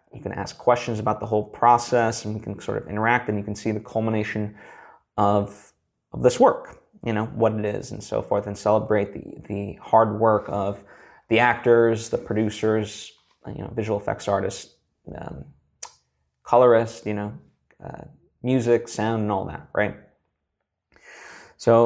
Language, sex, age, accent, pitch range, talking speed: English, male, 20-39, American, 105-115 Hz, 165 wpm